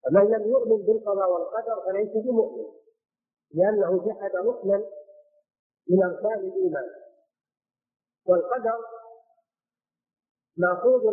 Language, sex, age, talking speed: Arabic, male, 50-69, 80 wpm